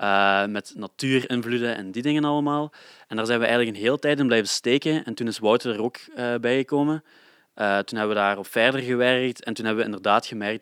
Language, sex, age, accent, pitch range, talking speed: Dutch, male, 20-39, Dutch, 105-125 Hz, 225 wpm